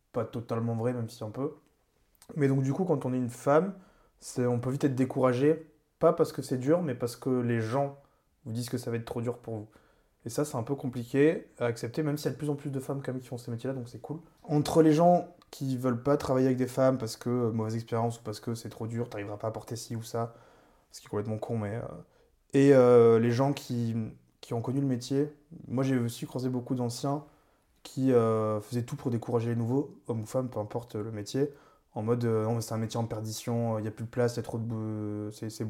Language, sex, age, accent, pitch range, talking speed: French, male, 20-39, French, 115-135 Hz, 260 wpm